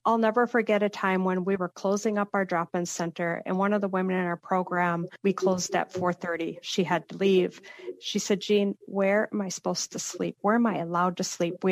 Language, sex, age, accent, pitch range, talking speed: English, female, 40-59, American, 175-205 Hz, 230 wpm